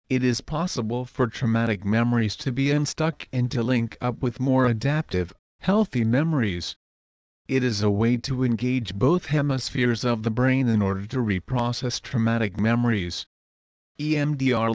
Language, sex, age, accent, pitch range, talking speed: English, male, 50-69, American, 110-135 Hz, 145 wpm